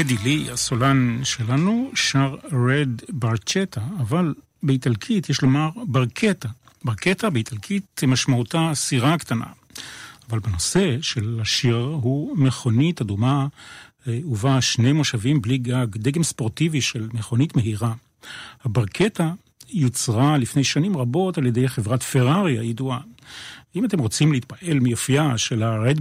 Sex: male